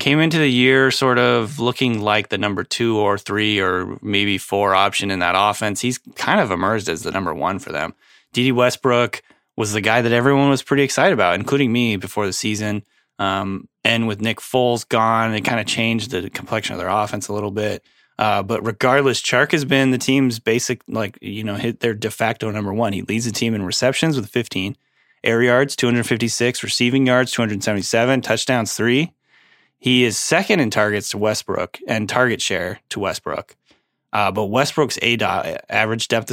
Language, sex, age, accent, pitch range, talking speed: English, male, 20-39, American, 105-125 Hz, 190 wpm